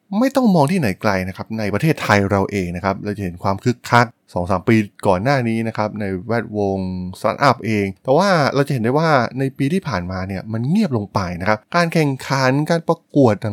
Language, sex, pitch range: Thai, male, 100-130 Hz